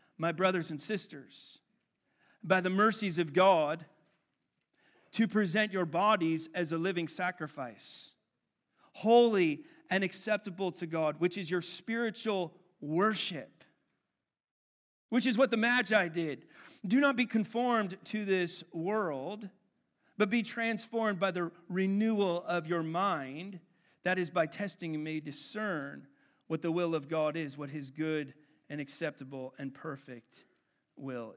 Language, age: English, 40-59